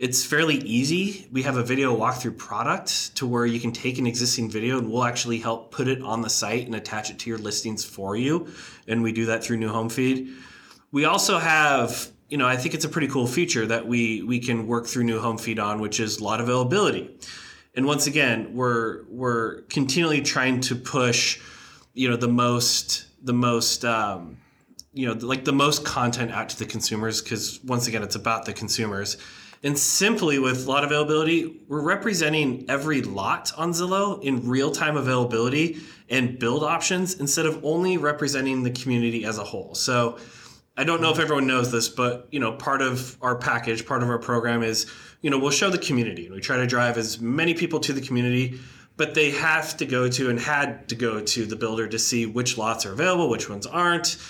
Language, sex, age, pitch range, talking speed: English, male, 20-39, 115-150 Hz, 205 wpm